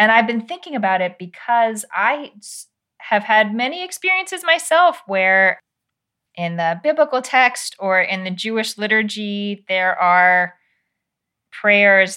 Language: English